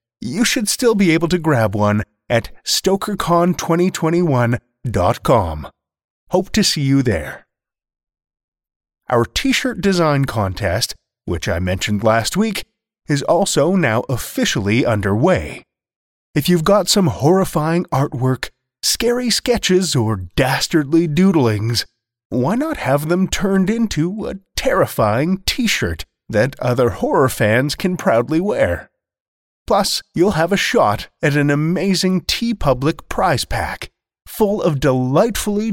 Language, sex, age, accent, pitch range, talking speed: English, male, 30-49, American, 115-190 Hz, 120 wpm